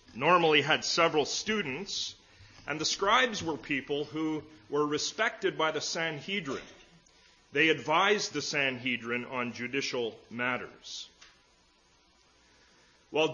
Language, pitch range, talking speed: English, 130-185 Hz, 105 wpm